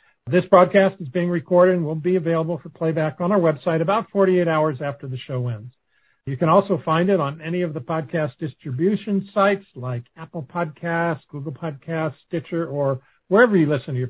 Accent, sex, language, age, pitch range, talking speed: American, male, English, 60-79, 150-190 Hz, 190 wpm